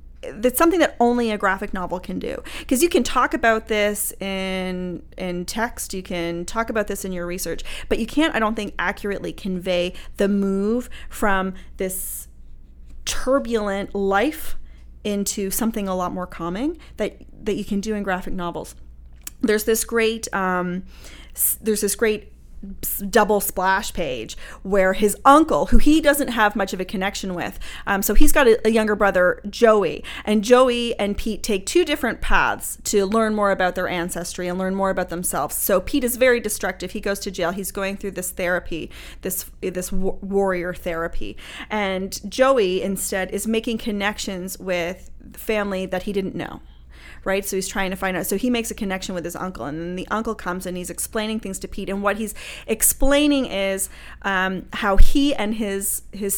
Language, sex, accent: English, female, American